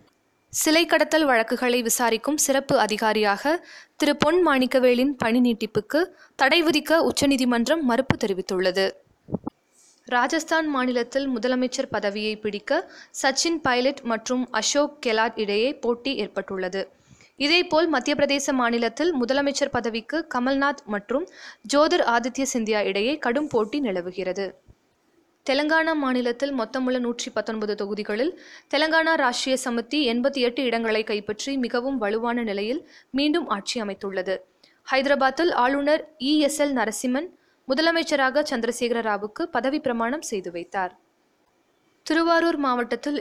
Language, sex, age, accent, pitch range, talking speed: Tamil, female, 20-39, native, 230-300 Hz, 105 wpm